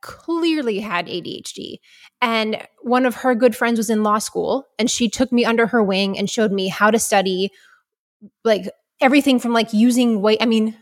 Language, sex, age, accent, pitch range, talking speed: English, female, 20-39, American, 200-250 Hz, 190 wpm